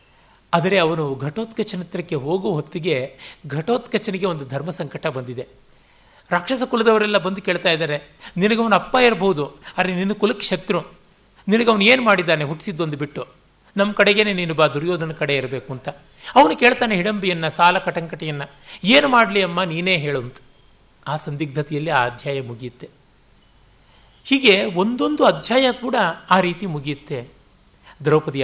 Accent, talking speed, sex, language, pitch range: native, 125 wpm, male, Kannada, 145-205 Hz